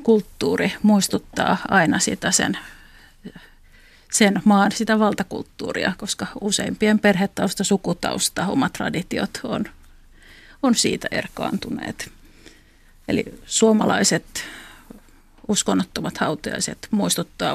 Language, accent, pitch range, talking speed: Finnish, native, 205-225 Hz, 80 wpm